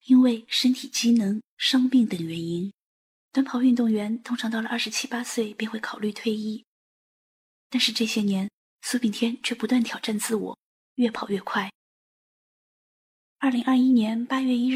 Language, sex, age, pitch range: Chinese, female, 20-39, 205-250 Hz